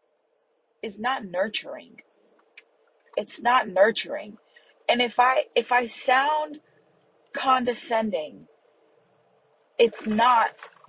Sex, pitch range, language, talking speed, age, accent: female, 220-295 Hz, English, 85 wpm, 30-49, American